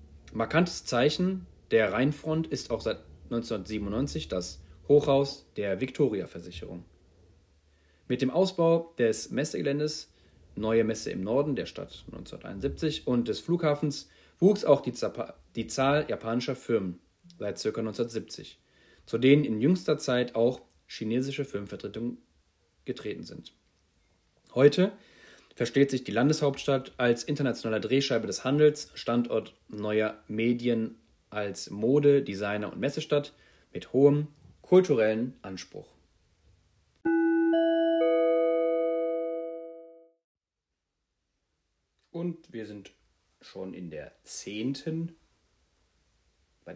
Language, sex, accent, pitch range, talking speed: German, male, German, 90-145 Hz, 100 wpm